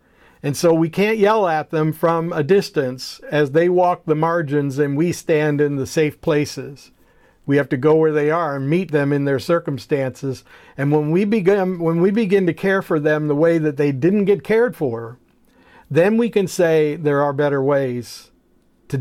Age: 50-69